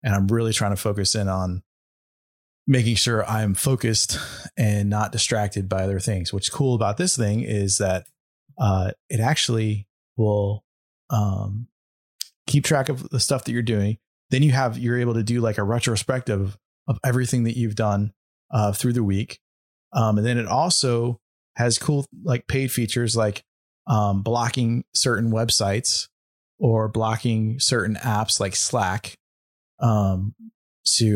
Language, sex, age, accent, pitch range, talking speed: English, male, 20-39, American, 100-125 Hz, 155 wpm